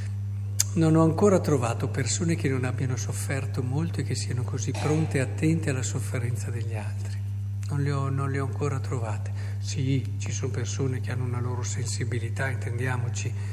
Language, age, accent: Italian, 50-69, native